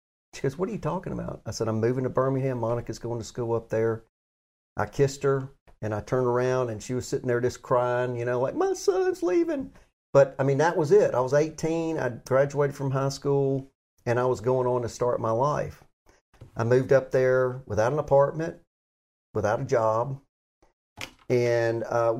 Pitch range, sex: 110-135 Hz, male